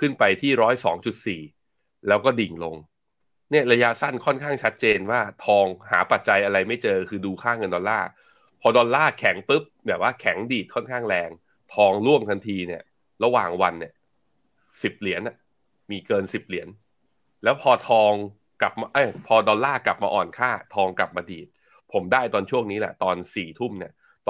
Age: 20-39